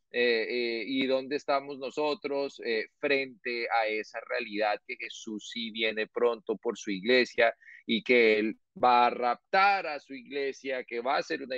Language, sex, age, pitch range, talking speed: Spanish, male, 30-49, 125-165 Hz, 170 wpm